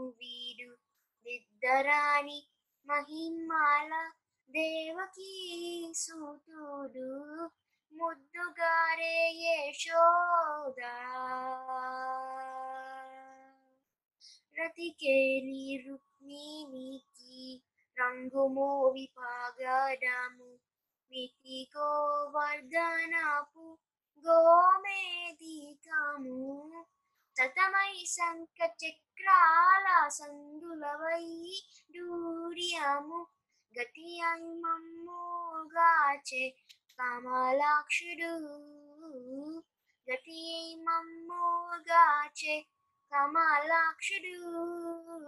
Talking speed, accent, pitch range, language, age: 35 wpm, native, 265-335 Hz, Telugu, 20-39